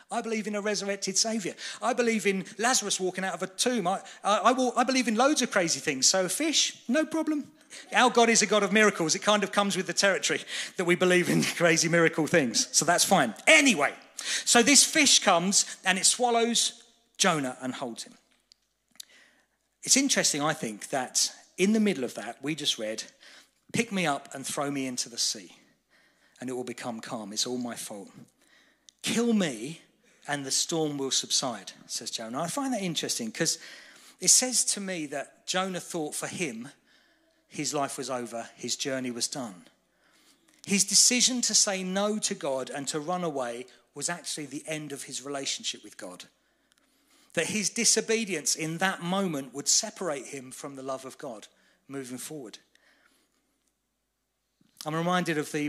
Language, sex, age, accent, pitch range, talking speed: English, male, 40-59, British, 150-240 Hz, 180 wpm